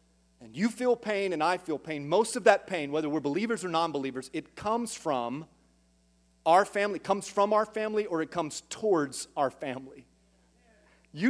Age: 30-49